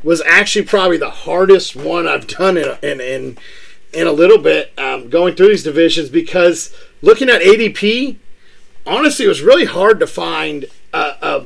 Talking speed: 180 wpm